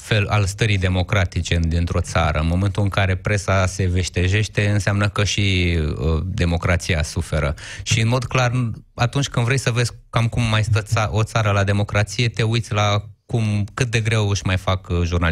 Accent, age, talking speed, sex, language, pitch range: native, 20-39, 185 wpm, male, Romanian, 90-110 Hz